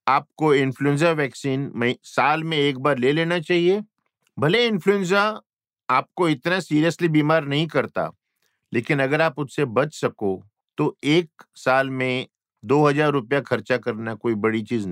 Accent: native